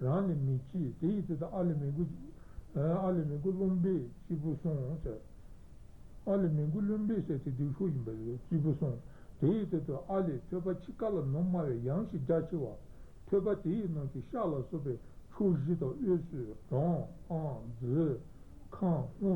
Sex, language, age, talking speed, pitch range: male, Italian, 60-79, 85 wpm, 130-170 Hz